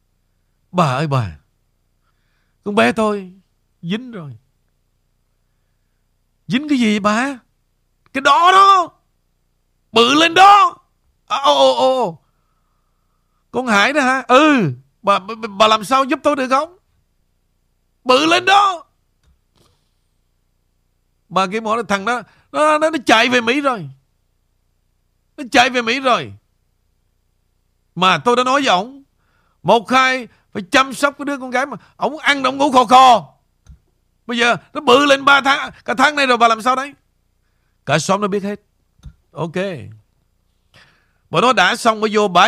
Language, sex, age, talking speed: Vietnamese, male, 60-79, 150 wpm